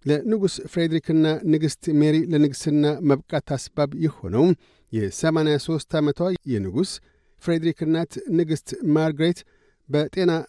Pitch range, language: 145-170 Hz, Amharic